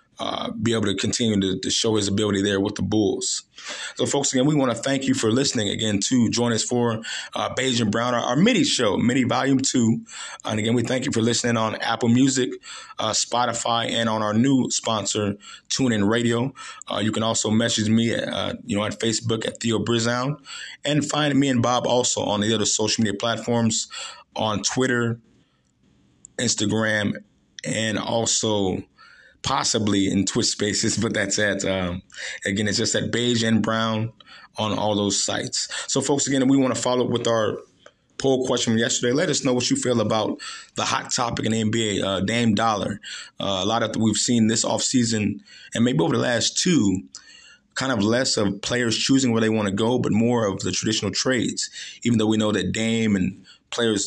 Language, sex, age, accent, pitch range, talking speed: English, male, 20-39, American, 105-120 Hz, 200 wpm